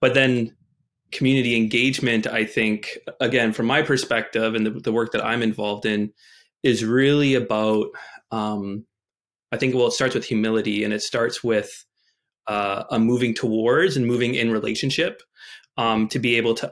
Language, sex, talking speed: English, male, 165 wpm